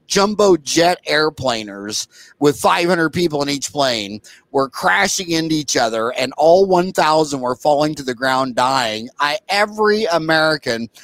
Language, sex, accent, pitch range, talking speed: English, male, American, 135-185 Hz, 140 wpm